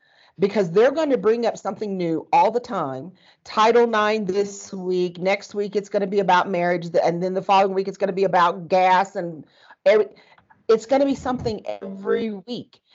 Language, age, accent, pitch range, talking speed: English, 40-59, American, 175-220 Hz, 195 wpm